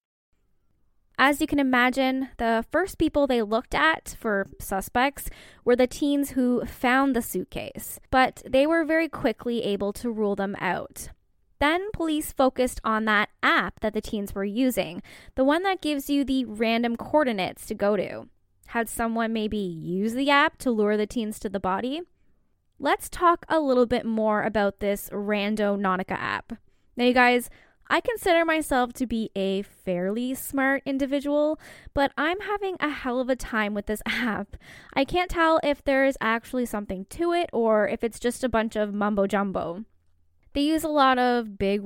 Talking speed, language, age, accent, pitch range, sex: 175 wpm, English, 10-29, American, 210-275 Hz, female